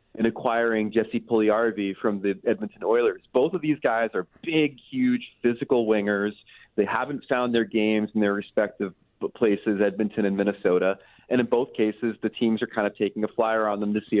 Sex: male